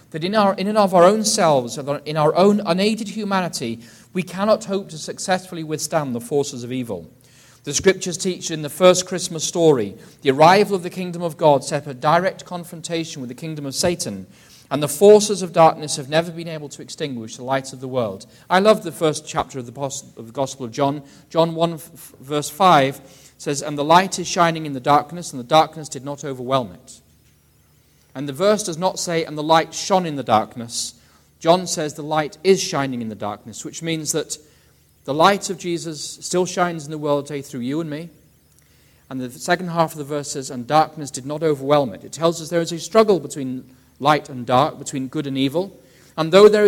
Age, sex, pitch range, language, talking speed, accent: 40-59, male, 135-170 Hz, English, 210 wpm, British